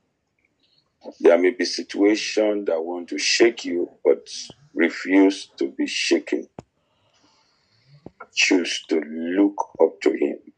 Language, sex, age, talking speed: English, male, 50-69, 115 wpm